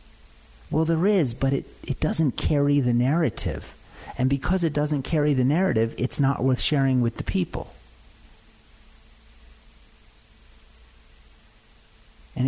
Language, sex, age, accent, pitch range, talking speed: English, male, 50-69, American, 110-160 Hz, 120 wpm